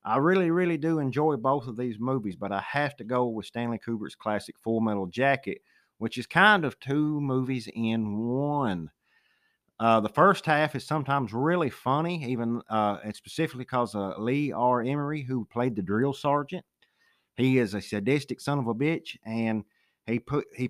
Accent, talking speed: American, 185 wpm